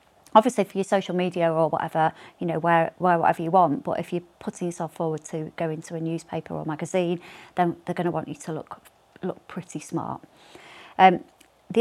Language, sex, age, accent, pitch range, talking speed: English, female, 30-49, British, 165-190 Hz, 205 wpm